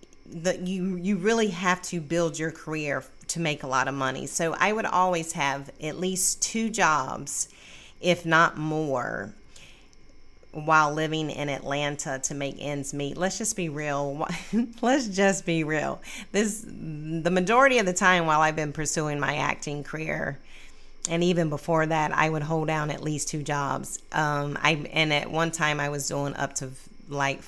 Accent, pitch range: American, 145-190 Hz